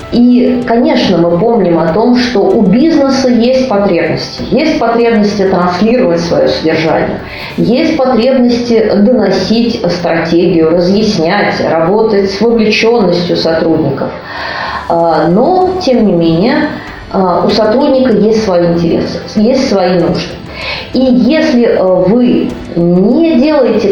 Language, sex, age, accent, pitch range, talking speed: Russian, female, 30-49, native, 180-250 Hz, 105 wpm